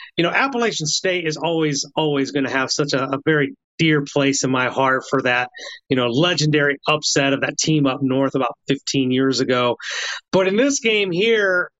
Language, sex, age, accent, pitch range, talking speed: English, male, 30-49, American, 140-190 Hz, 200 wpm